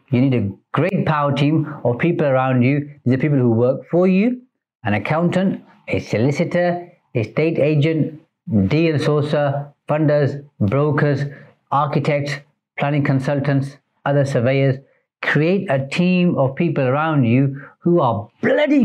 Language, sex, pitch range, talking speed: English, male, 135-170 Hz, 130 wpm